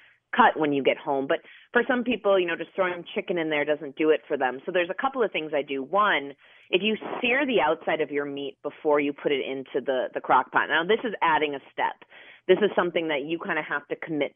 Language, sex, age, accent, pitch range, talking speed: English, female, 30-49, American, 150-205 Hz, 265 wpm